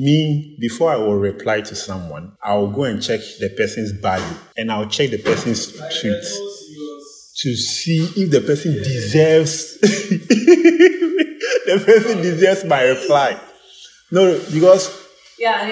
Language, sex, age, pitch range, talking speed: English, male, 20-39, 105-175 Hz, 135 wpm